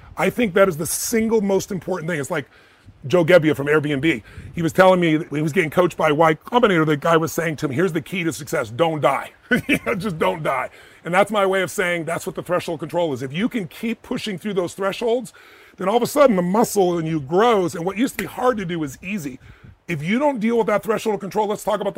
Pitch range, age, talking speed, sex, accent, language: 170-215 Hz, 30-49, 255 wpm, female, American, English